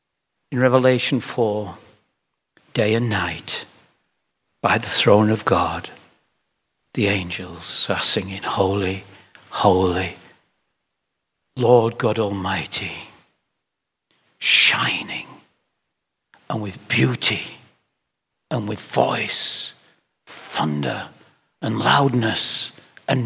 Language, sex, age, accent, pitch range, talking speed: English, male, 60-79, British, 105-175 Hz, 80 wpm